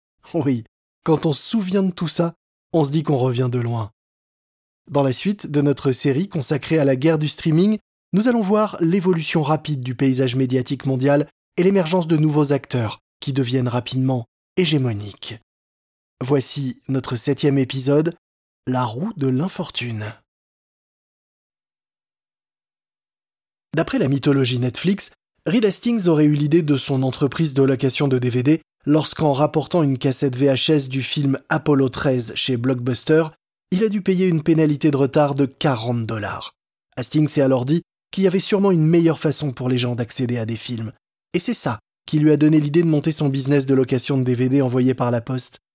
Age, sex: 20-39, male